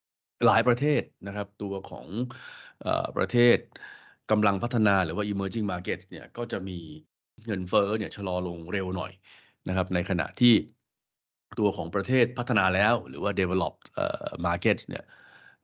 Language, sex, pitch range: Thai, male, 90-105 Hz